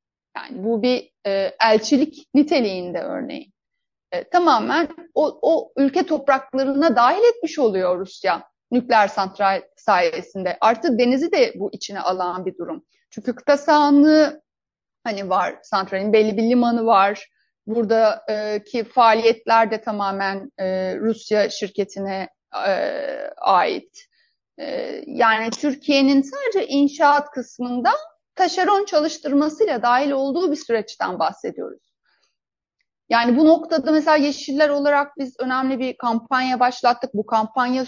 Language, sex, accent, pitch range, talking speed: Turkish, female, native, 225-290 Hz, 115 wpm